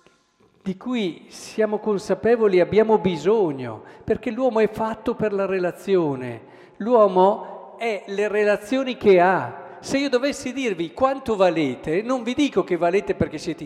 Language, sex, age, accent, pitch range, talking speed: Italian, male, 50-69, native, 145-215 Hz, 145 wpm